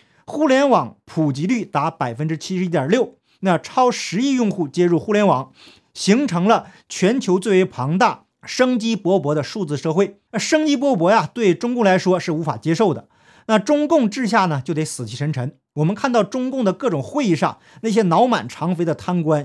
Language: Chinese